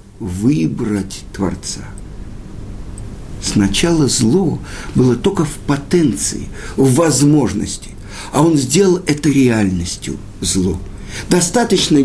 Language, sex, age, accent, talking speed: Russian, male, 60-79, native, 85 wpm